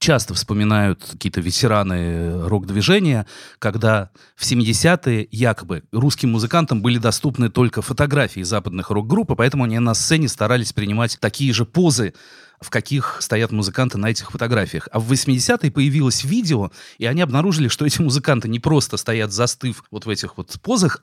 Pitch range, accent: 105-135 Hz, native